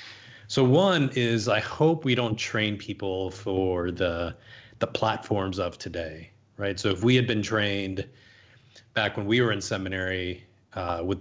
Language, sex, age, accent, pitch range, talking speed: English, male, 30-49, American, 95-120 Hz, 160 wpm